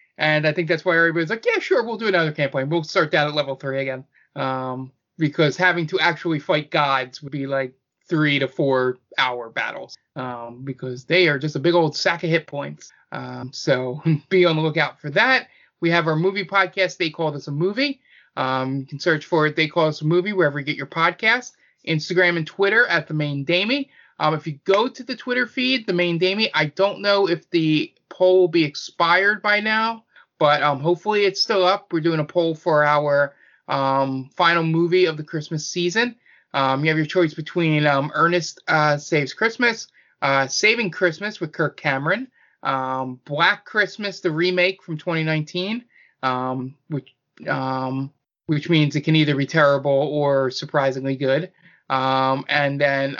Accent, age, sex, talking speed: American, 20-39, male, 190 wpm